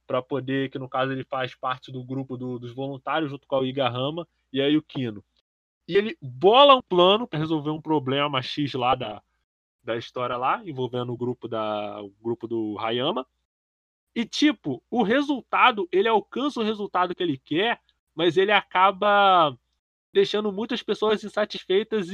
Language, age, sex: Portuguese, 20-39, male